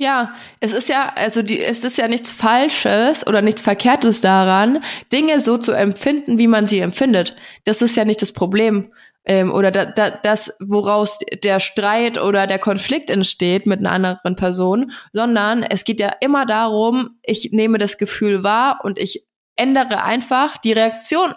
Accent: German